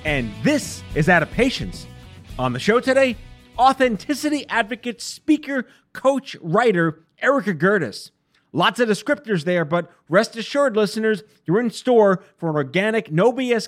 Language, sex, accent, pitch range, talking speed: English, male, American, 175-245 Hz, 145 wpm